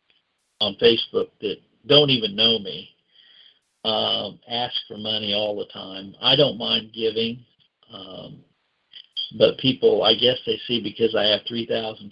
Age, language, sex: 50-69, English, male